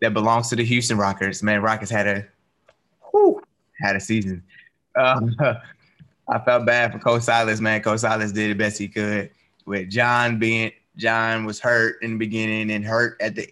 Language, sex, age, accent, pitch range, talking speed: English, male, 20-39, American, 105-120 Hz, 185 wpm